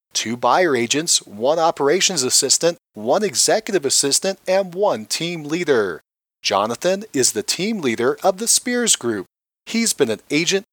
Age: 40-59